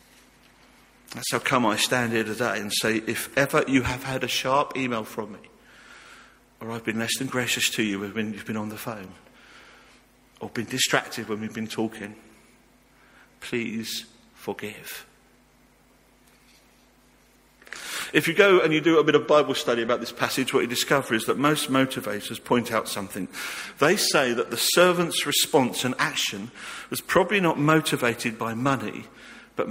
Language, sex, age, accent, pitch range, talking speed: English, male, 50-69, British, 115-150 Hz, 165 wpm